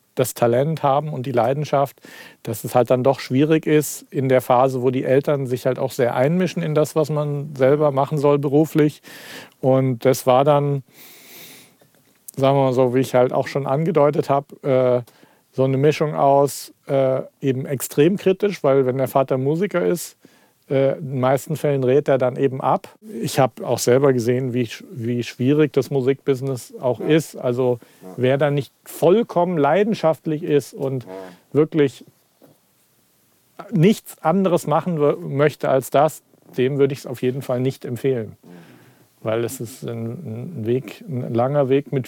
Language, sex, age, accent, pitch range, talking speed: German, male, 40-59, German, 125-150 Hz, 165 wpm